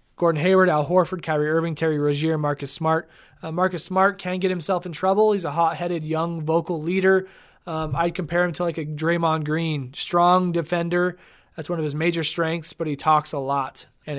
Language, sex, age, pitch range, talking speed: English, male, 20-39, 160-190 Hz, 200 wpm